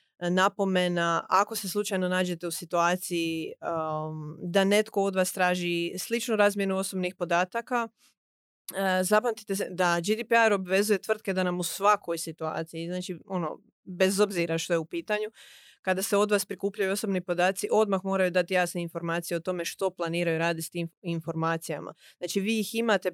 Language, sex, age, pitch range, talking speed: Croatian, female, 30-49, 175-205 Hz, 155 wpm